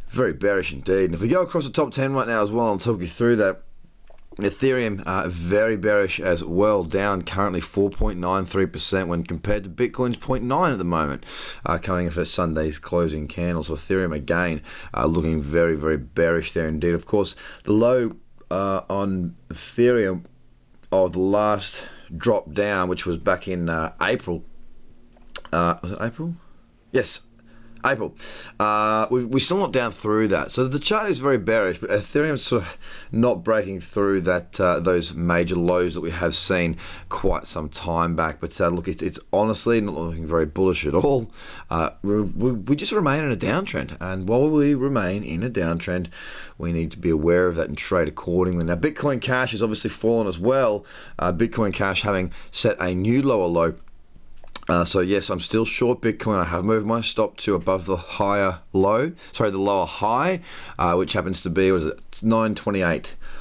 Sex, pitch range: male, 85-115 Hz